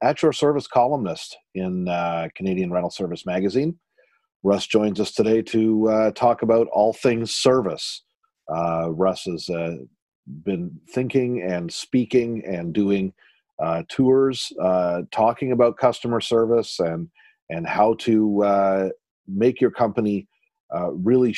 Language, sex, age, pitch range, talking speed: English, male, 40-59, 95-115 Hz, 135 wpm